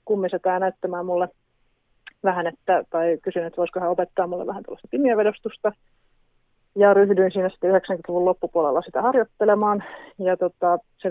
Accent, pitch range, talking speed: native, 175-205 Hz, 140 wpm